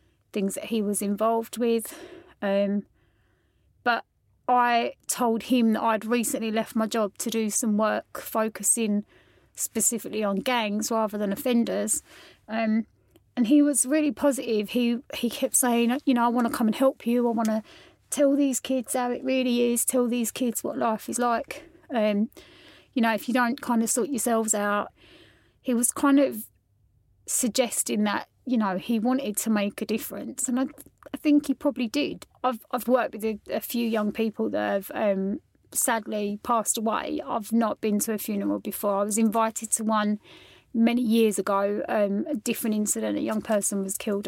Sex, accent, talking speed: female, British, 185 wpm